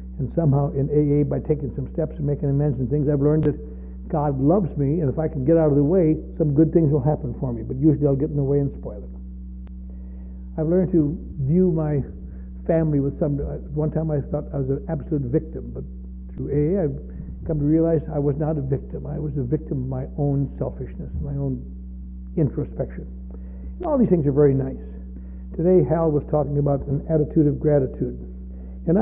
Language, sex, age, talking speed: English, male, 60-79, 210 wpm